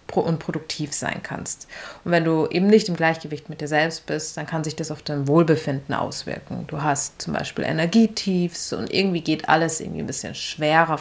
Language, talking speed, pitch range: German, 195 wpm, 150-175 Hz